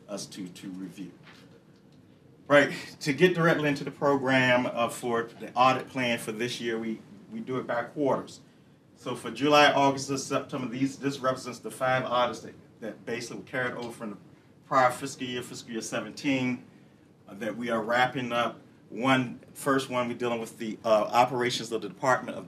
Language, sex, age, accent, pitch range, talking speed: English, male, 40-59, American, 115-130 Hz, 185 wpm